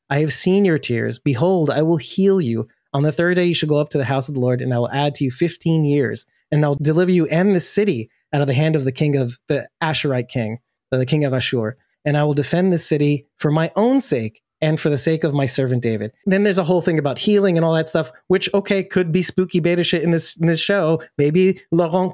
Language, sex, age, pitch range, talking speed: English, male, 20-39, 130-180 Hz, 265 wpm